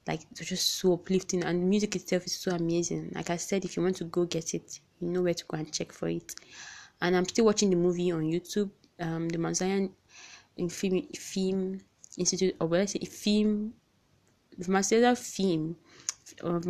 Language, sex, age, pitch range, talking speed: English, female, 20-39, 165-190 Hz, 190 wpm